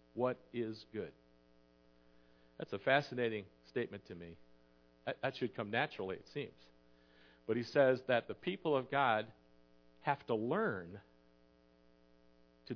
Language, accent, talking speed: English, American, 125 wpm